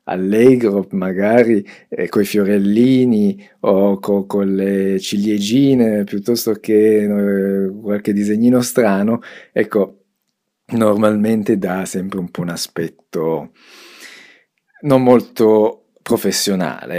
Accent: native